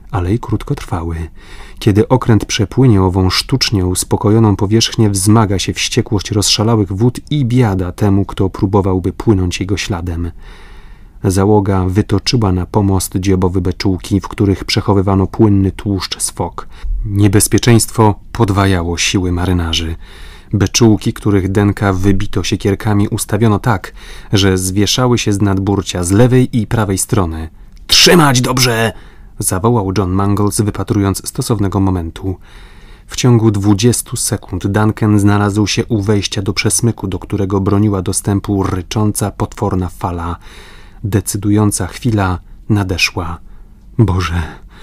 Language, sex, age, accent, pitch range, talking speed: Polish, male, 30-49, native, 95-110 Hz, 115 wpm